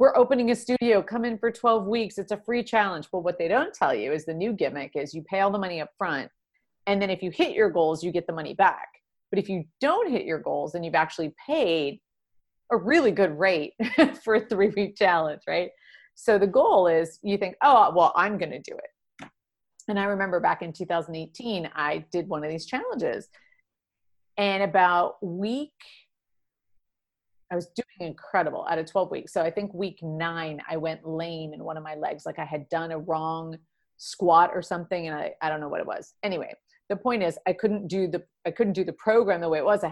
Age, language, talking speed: 30-49, English, 220 wpm